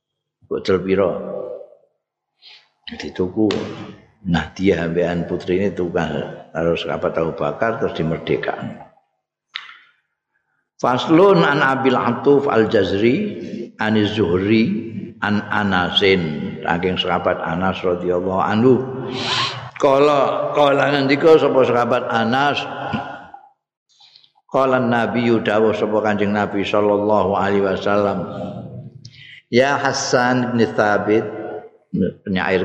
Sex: male